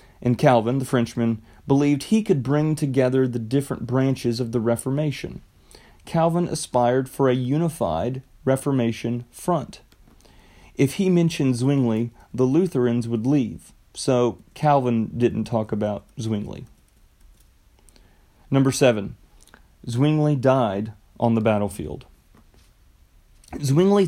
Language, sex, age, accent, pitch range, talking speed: English, male, 30-49, American, 115-145 Hz, 110 wpm